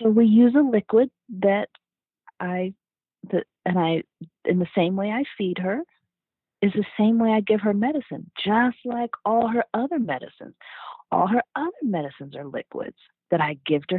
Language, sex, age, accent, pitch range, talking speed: English, female, 40-59, American, 185-275 Hz, 175 wpm